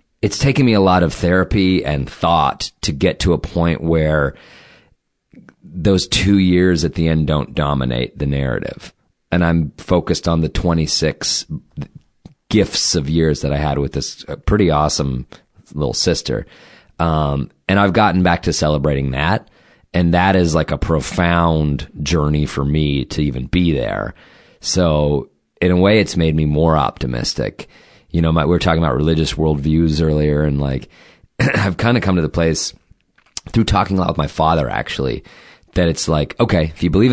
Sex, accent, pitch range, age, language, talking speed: male, American, 75-95 Hz, 30-49, English, 170 wpm